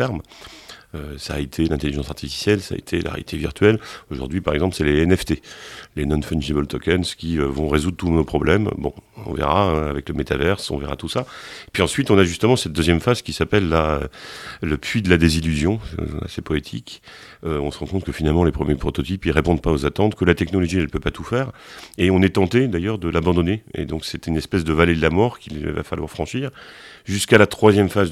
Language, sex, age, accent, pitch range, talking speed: French, male, 40-59, French, 75-100 Hz, 230 wpm